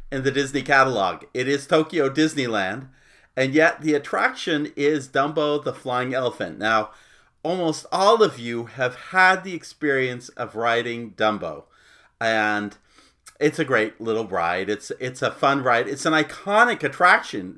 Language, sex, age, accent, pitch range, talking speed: English, male, 40-59, American, 125-160 Hz, 150 wpm